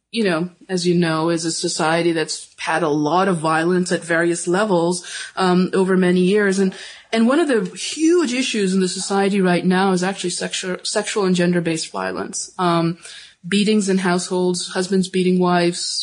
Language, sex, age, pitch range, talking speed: English, female, 20-39, 175-215 Hz, 175 wpm